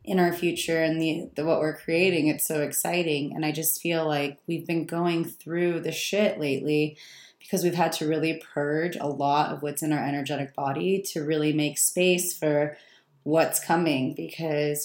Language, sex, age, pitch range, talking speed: English, female, 20-39, 155-175 Hz, 185 wpm